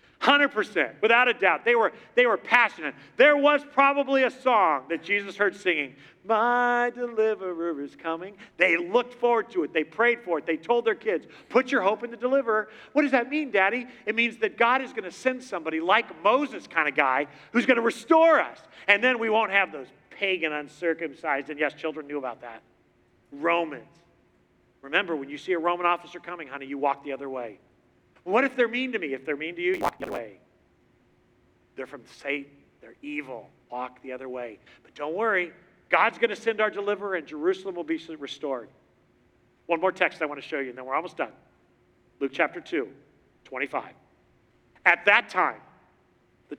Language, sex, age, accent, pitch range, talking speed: English, male, 40-59, American, 155-240 Hz, 195 wpm